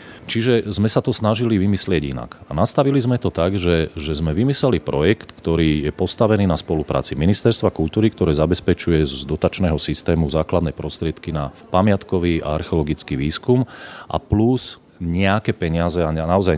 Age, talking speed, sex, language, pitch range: 40-59, 150 wpm, male, Slovak, 80-105 Hz